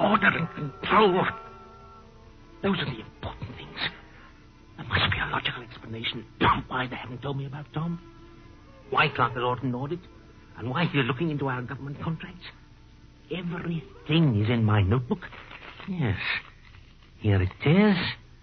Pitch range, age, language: 110-170 Hz, 60-79, English